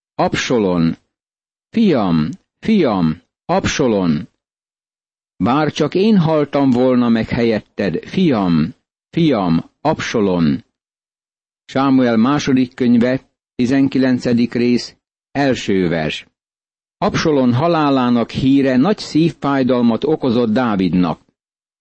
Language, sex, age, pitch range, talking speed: Hungarian, male, 60-79, 120-140 Hz, 75 wpm